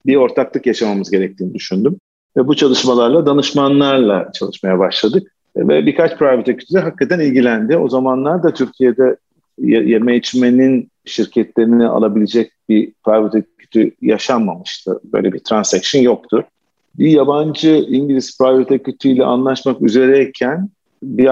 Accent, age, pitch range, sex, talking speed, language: native, 50-69, 115-135 Hz, male, 120 wpm, Turkish